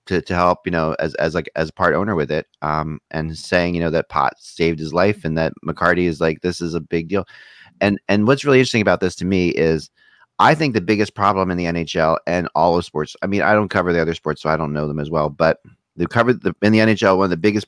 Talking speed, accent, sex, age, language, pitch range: 270 wpm, American, male, 30-49, English, 85-105 Hz